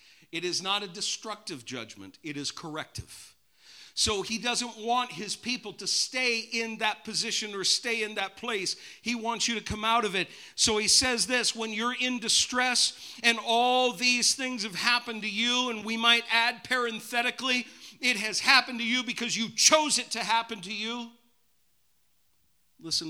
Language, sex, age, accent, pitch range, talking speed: English, male, 50-69, American, 165-230 Hz, 175 wpm